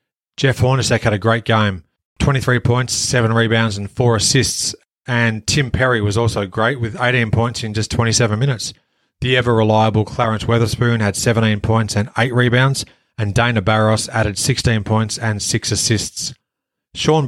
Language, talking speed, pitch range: English, 160 wpm, 110-125 Hz